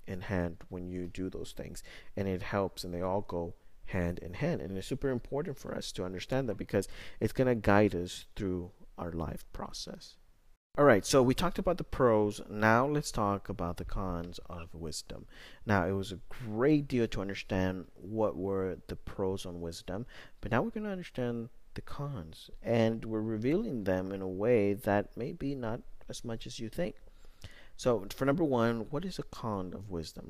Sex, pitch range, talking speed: male, 90-120 Hz, 200 wpm